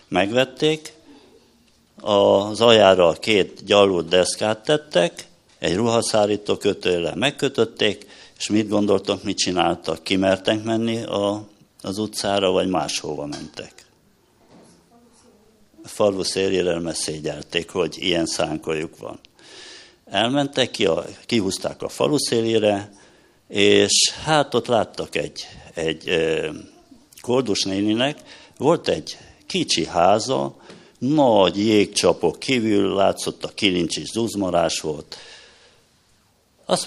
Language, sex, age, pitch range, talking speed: Hungarian, male, 60-79, 95-125 Hz, 90 wpm